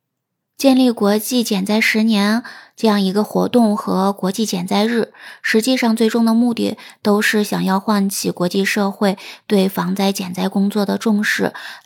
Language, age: Chinese, 20-39